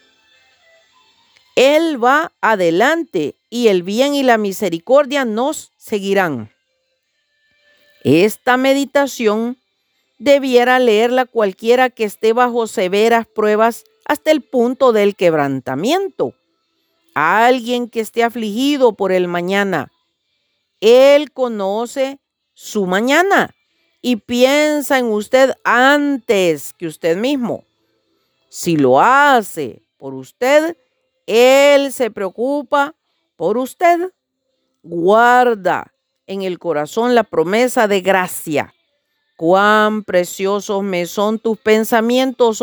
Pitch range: 200-275 Hz